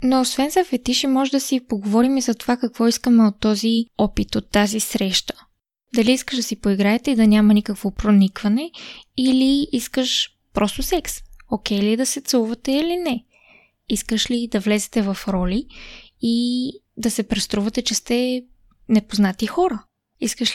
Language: Bulgarian